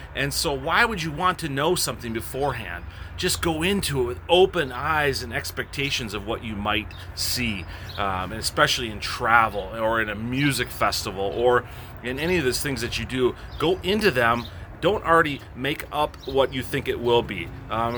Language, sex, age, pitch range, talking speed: English, male, 30-49, 105-135 Hz, 185 wpm